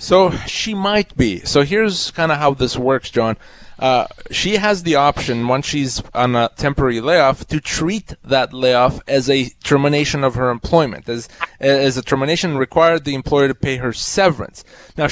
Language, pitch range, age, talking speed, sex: English, 130-170 Hz, 30-49, 180 wpm, male